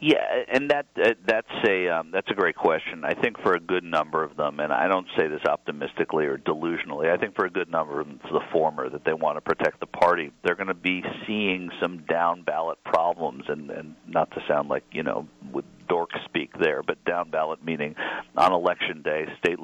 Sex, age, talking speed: male, 50-69, 225 wpm